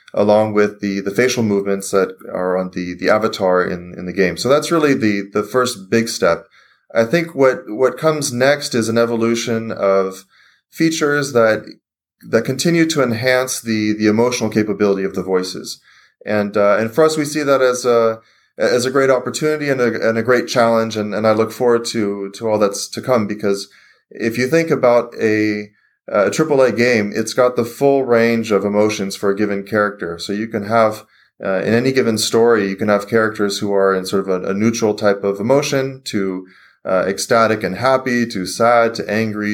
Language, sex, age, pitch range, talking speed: English, male, 30-49, 100-120 Hz, 200 wpm